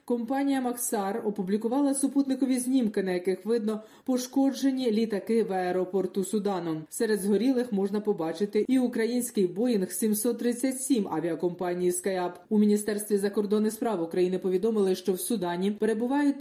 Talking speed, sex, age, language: 115 wpm, female, 20-39, Ukrainian